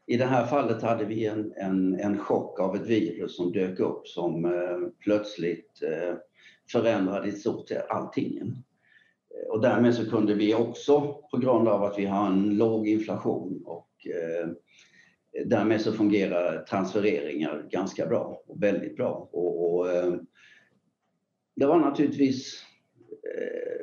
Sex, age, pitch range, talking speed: male, 60-79, 100-140 Hz, 130 wpm